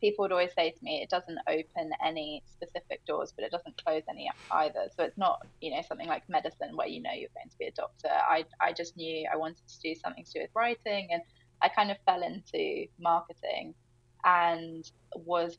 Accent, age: British, 10-29